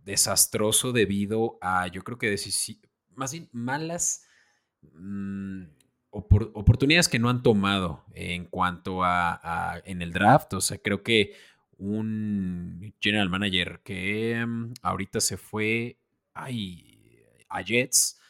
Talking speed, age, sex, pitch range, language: 130 wpm, 30-49, male, 95-130 Hz, Spanish